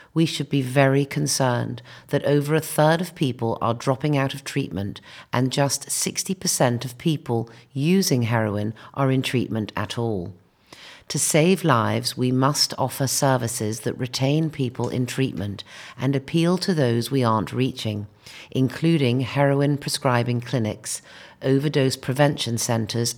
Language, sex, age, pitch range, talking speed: English, female, 50-69, 115-145 Hz, 135 wpm